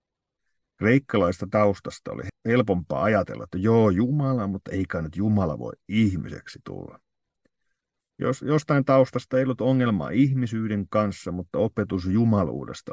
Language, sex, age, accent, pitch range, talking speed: Finnish, male, 50-69, native, 100-130 Hz, 120 wpm